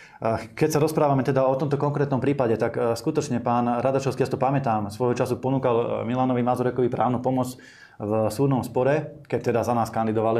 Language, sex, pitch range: Slovak, male, 115-135 Hz